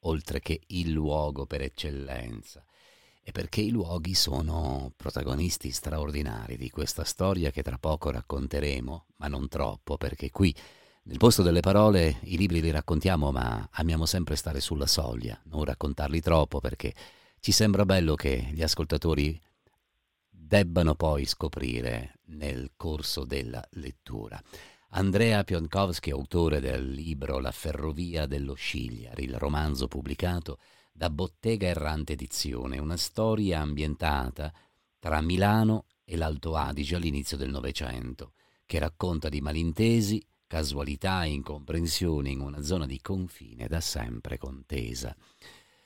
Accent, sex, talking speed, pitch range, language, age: native, male, 130 wpm, 70-85 Hz, Italian, 50-69